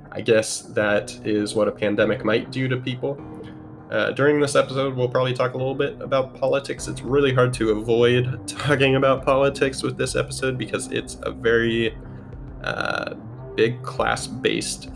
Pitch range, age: 105-130 Hz, 20-39